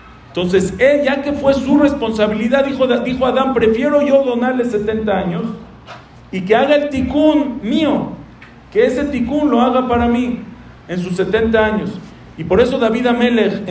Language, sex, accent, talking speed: English, male, Mexican, 160 wpm